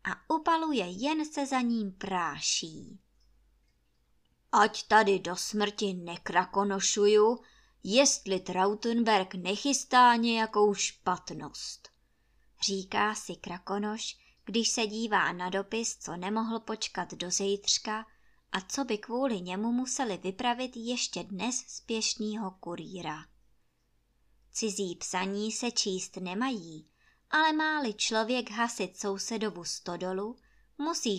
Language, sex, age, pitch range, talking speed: Czech, male, 20-39, 185-235 Hz, 105 wpm